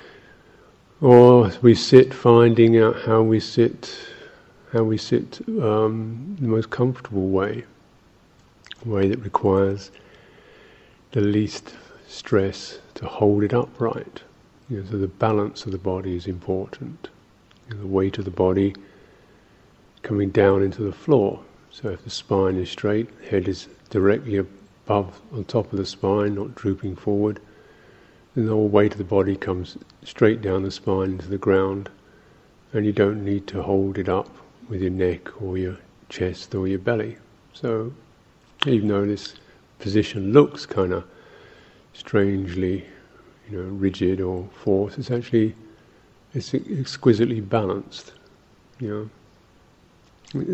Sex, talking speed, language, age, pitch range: male, 140 wpm, English, 50-69, 95-115 Hz